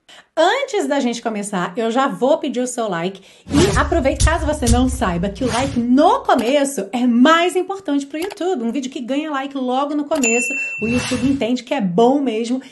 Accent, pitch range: Brazilian, 220-280 Hz